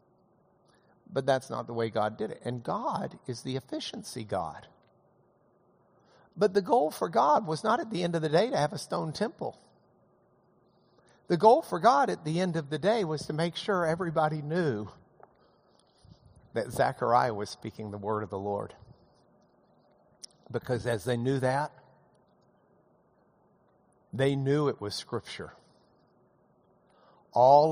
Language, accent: English, American